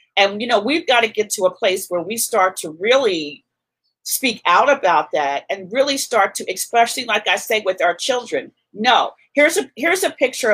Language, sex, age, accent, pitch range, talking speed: English, female, 40-59, American, 195-270 Hz, 205 wpm